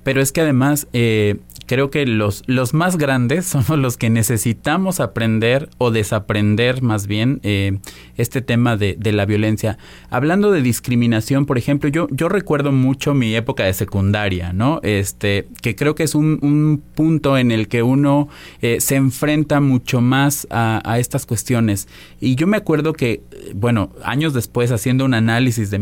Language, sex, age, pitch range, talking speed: Spanish, male, 30-49, 110-145 Hz, 170 wpm